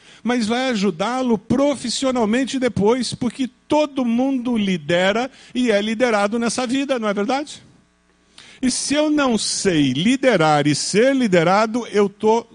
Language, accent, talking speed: Portuguese, Brazilian, 135 wpm